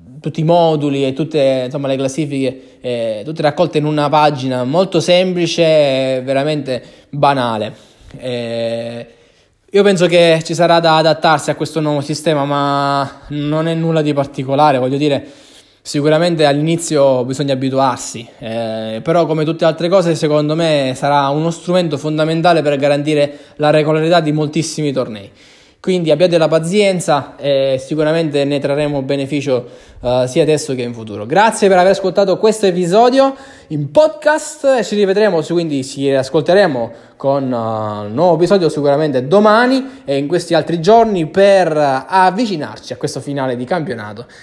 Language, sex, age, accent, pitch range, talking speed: Italian, male, 20-39, native, 135-175 Hz, 150 wpm